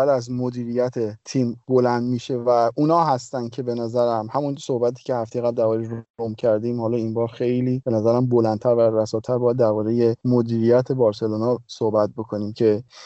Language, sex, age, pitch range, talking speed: Persian, male, 30-49, 120-140 Hz, 160 wpm